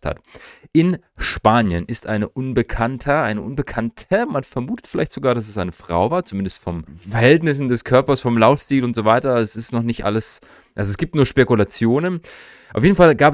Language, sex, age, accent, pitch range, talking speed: German, male, 30-49, German, 100-125 Hz, 185 wpm